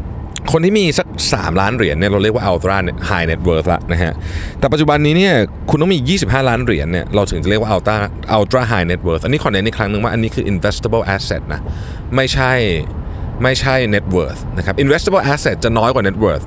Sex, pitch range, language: male, 85-130 Hz, Thai